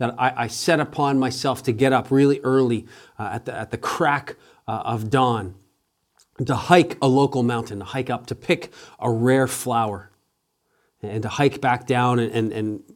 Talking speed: 190 wpm